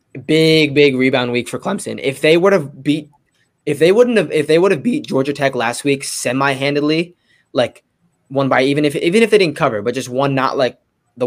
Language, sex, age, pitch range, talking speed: English, male, 20-39, 120-145 Hz, 220 wpm